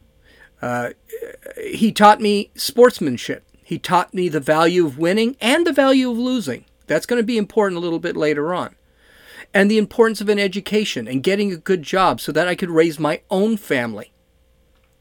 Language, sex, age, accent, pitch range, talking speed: English, male, 40-59, American, 155-210 Hz, 185 wpm